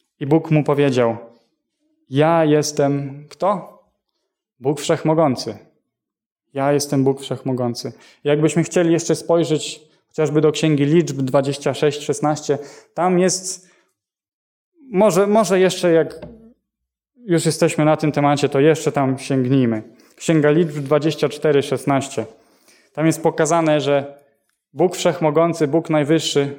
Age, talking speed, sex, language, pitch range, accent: 10-29, 115 wpm, male, Polish, 140-165 Hz, native